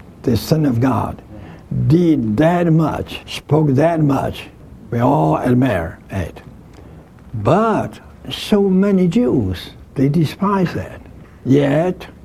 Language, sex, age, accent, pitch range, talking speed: English, male, 60-79, American, 110-155 Hz, 110 wpm